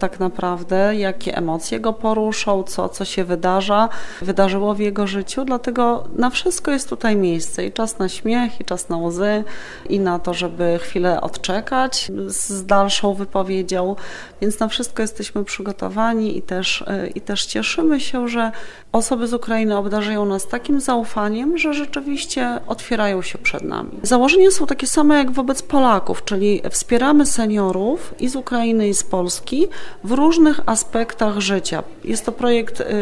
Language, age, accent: Polish, 30-49, native